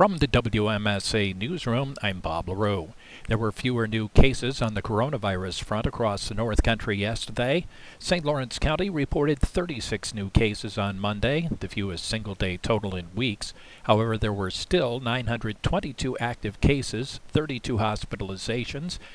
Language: English